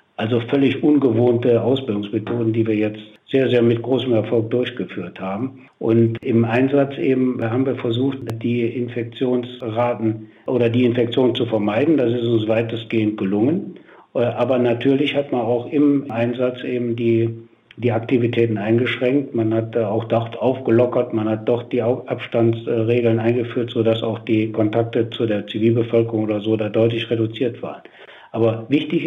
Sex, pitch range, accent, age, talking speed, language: male, 115-125 Hz, German, 60-79, 145 wpm, German